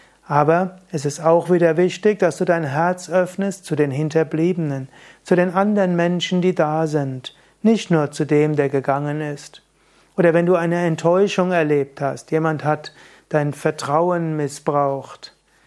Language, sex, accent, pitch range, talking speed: German, male, German, 145-180 Hz, 155 wpm